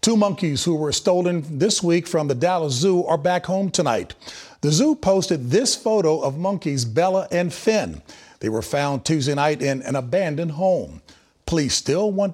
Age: 50-69